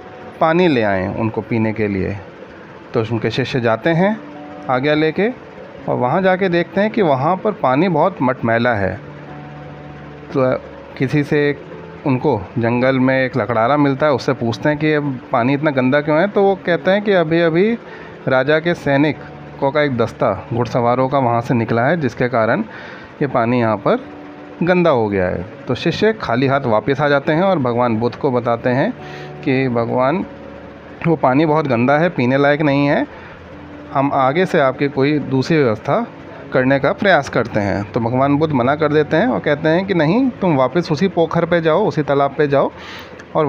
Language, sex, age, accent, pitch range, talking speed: Hindi, male, 30-49, native, 115-160 Hz, 185 wpm